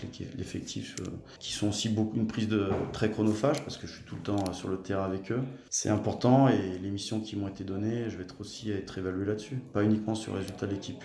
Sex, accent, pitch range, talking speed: male, French, 95-110 Hz, 240 wpm